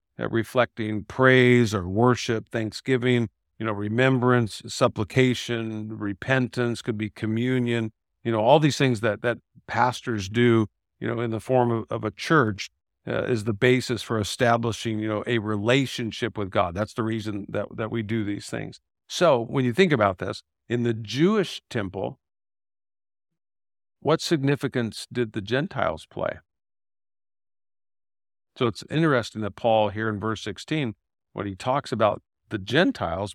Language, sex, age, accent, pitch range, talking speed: English, male, 50-69, American, 100-130 Hz, 150 wpm